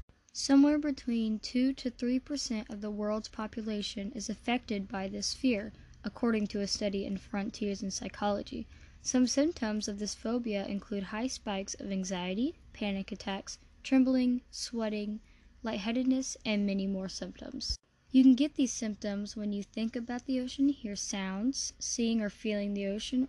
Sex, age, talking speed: female, 10-29, 150 wpm